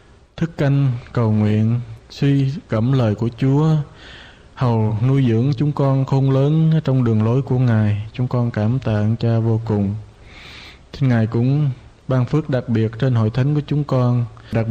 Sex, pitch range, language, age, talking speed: male, 115-135 Hz, Vietnamese, 20-39, 170 wpm